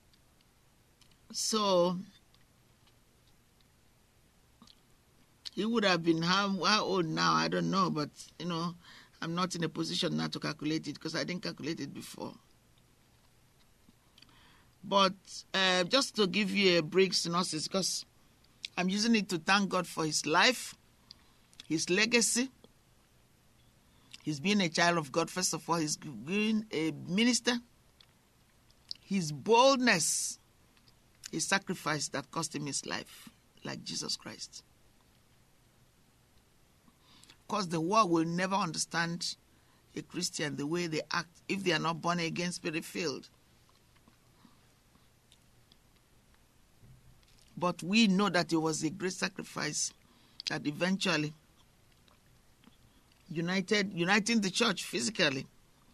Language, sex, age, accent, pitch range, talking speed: English, male, 50-69, Nigerian, 160-200 Hz, 120 wpm